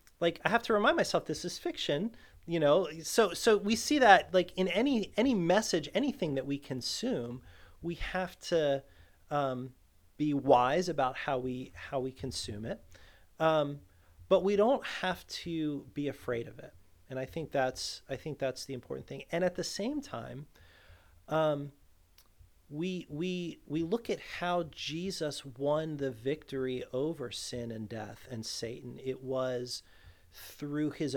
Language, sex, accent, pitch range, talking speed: English, male, American, 115-160 Hz, 160 wpm